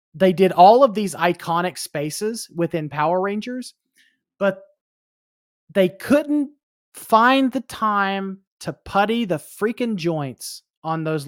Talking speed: 120 wpm